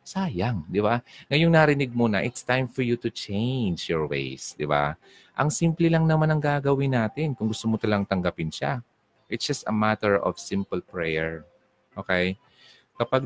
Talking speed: 175 wpm